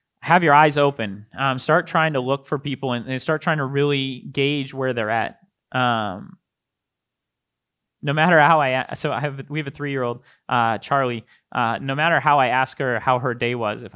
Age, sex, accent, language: 20-39, male, American, English